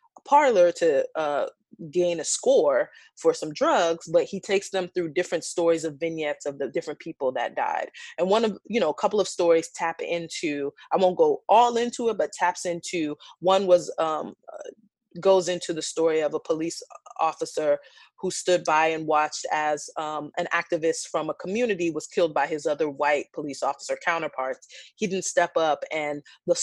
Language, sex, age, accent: English, female, 20-39, American